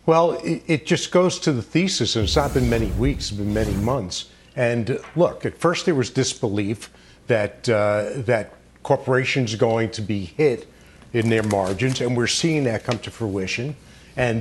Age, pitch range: 50-69, 115-160 Hz